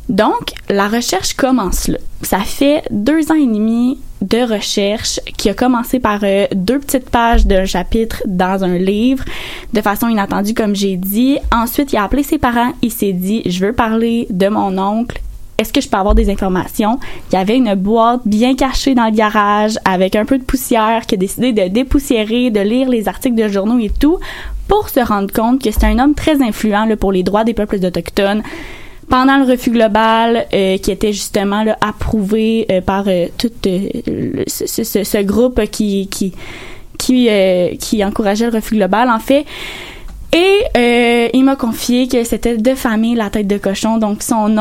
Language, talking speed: French, 185 wpm